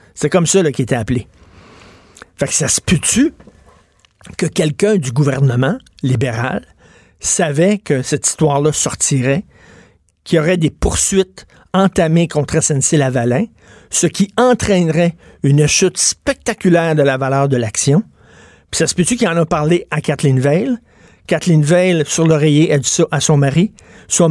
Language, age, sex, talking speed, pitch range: French, 50-69, male, 160 wpm, 140-180 Hz